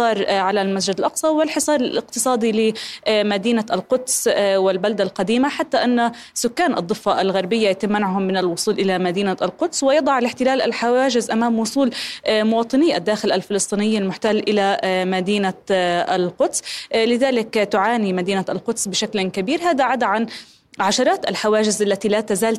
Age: 20-39